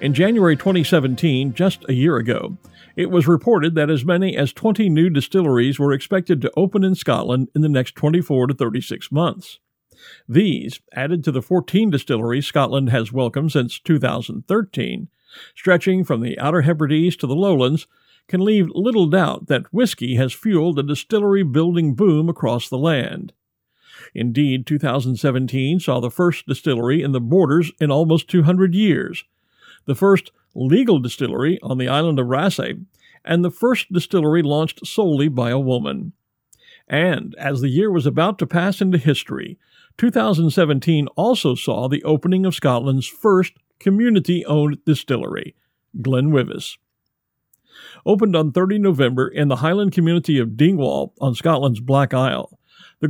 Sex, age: male, 50-69